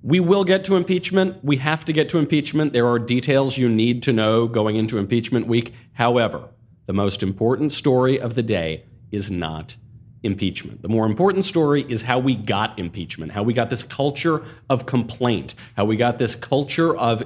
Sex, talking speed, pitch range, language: male, 190 wpm, 105-135 Hz, English